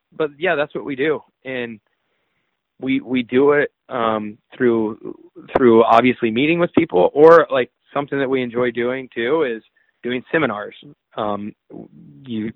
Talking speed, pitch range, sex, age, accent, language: 150 wpm, 110-135 Hz, male, 20-39, American, English